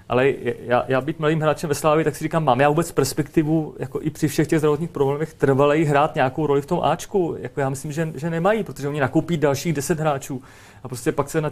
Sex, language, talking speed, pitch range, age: male, Czech, 240 wpm, 130-160 Hz, 30-49